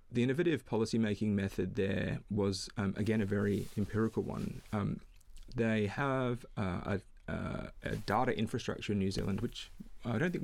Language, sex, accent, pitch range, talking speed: English, male, Australian, 95-115 Hz, 155 wpm